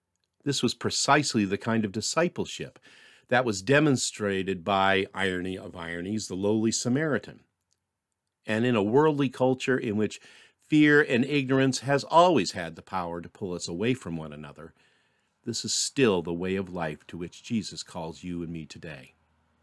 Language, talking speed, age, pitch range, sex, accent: English, 165 wpm, 50-69, 100-140 Hz, male, American